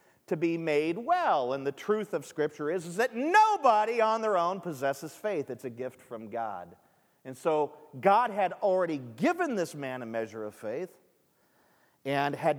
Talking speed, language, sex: 175 wpm, English, male